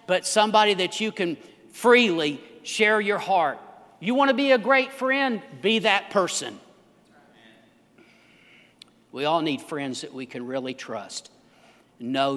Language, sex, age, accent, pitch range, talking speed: English, male, 50-69, American, 150-215 Hz, 135 wpm